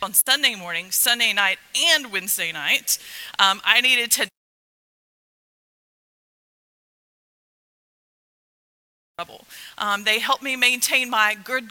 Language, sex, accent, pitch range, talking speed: English, female, American, 215-290 Hz, 110 wpm